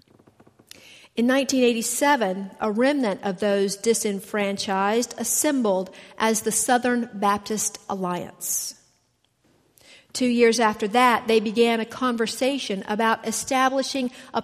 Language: English